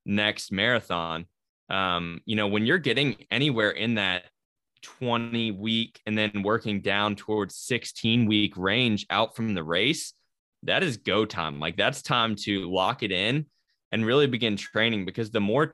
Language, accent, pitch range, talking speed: English, American, 95-115 Hz, 165 wpm